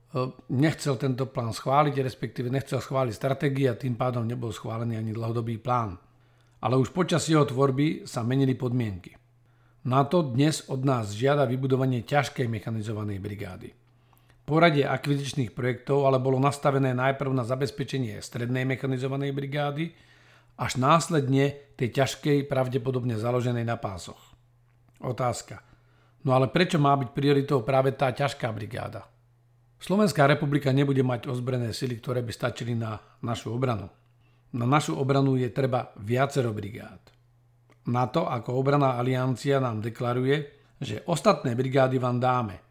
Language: Slovak